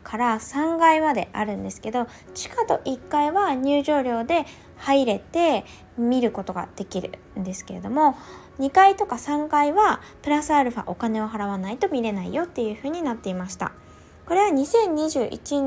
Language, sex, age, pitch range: Japanese, female, 20-39, 220-310 Hz